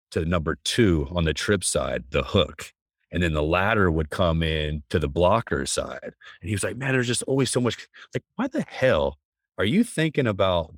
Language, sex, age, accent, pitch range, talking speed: English, male, 30-49, American, 80-105 Hz, 210 wpm